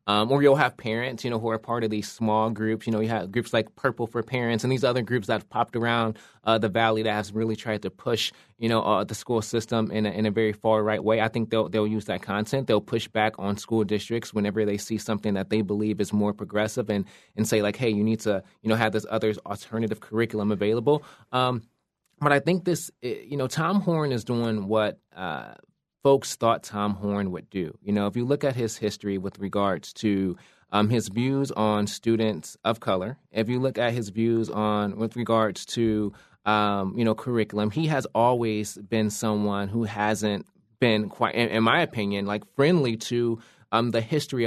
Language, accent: English, American